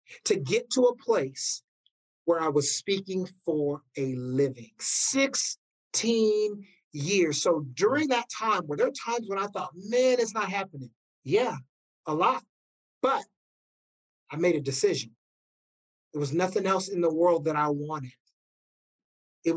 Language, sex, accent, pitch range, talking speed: English, male, American, 150-245 Hz, 145 wpm